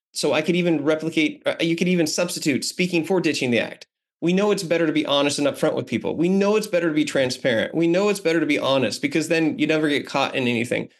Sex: male